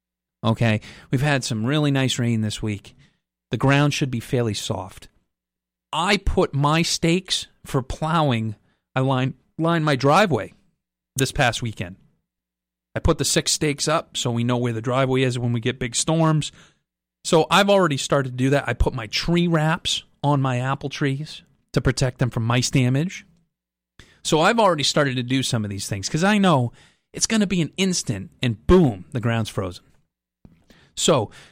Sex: male